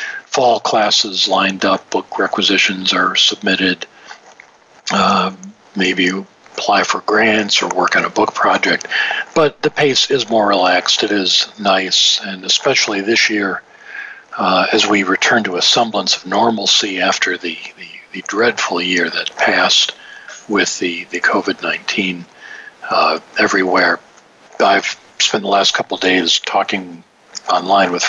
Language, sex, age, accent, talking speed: English, male, 50-69, American, 135 wpm